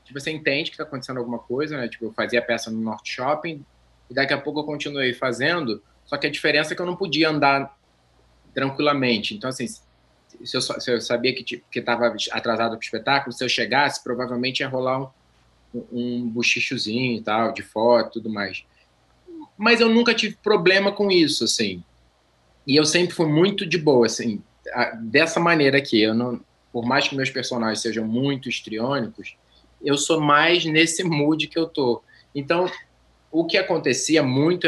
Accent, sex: Brazilian, male